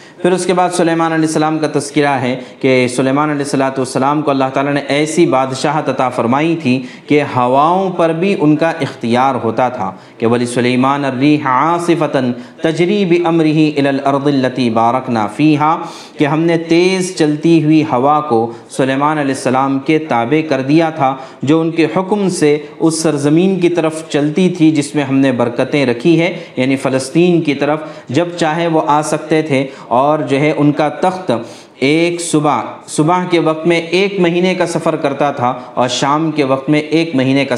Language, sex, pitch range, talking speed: Urdu, male, 135-165 Hz, 180 wpm